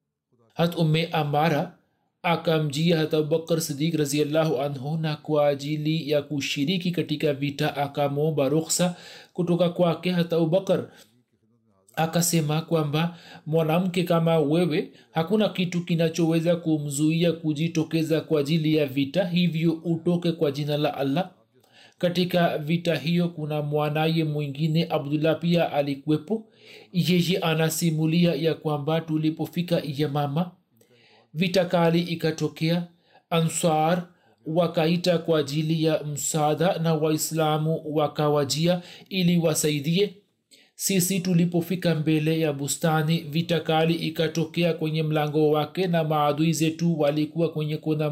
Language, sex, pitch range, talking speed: Swahili, male, 150-170 Hz, 105 wpm